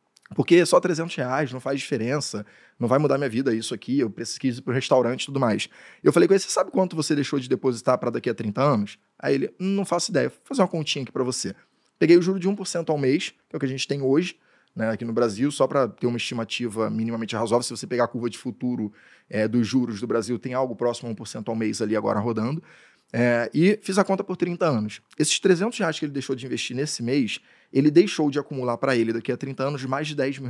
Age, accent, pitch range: 20-39, Brazilian, 120-155 Hz